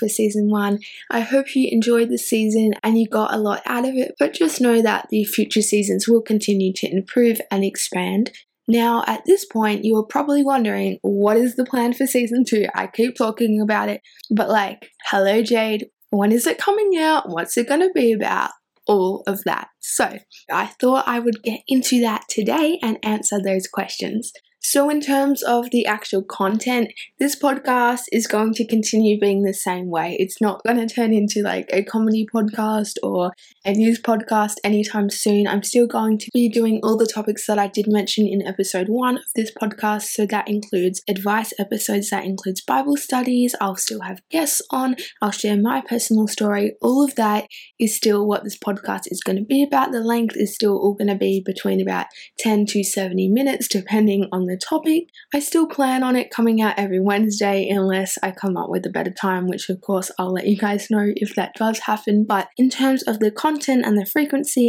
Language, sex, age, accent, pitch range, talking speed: English, female, 10-29, Australian, 205-240 Hz, 205 wpm